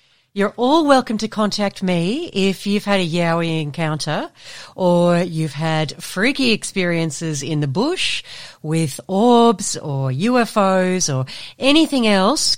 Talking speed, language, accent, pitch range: 130 wpm, English, Australian, 165-250 Hz